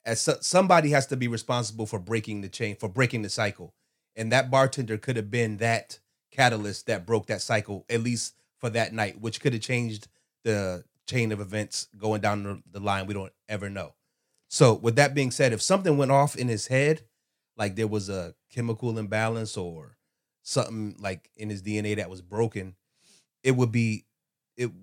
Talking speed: 190 wpm